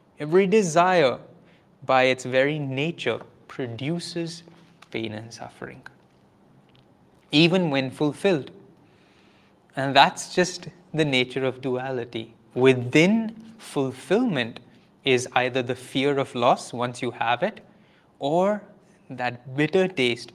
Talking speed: 105 wpm